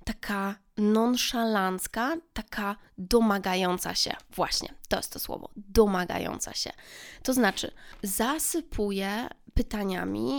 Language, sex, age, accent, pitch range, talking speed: Polish, female, 20-39, native, 195-235 Hz, 90 wpm